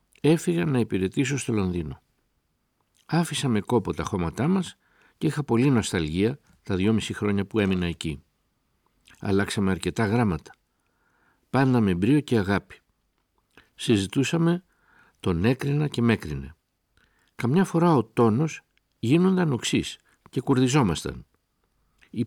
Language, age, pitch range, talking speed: Greek, 60-79, 95-150 Hz, 110 wpm